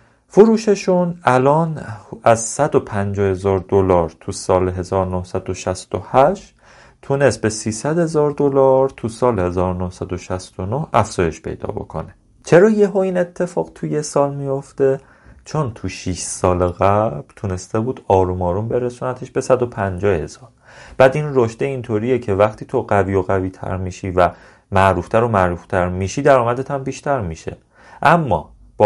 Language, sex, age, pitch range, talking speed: Persian, male, 40-59, 90-125 Hz, 130 wpm